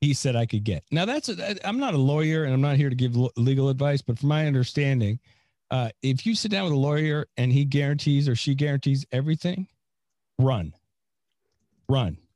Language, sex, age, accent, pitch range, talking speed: English, male, 40-59, American, 110-135 Hz, 200 wpm